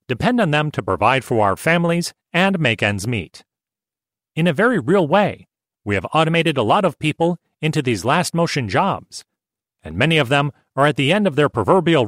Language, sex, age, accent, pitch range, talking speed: English, male, 40-59, American, 110-165 Hz, 195 wpm